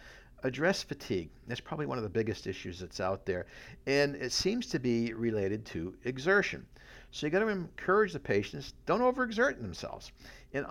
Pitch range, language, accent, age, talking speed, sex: 100-145 Hz, English, American, 60-79, 175 wpm, male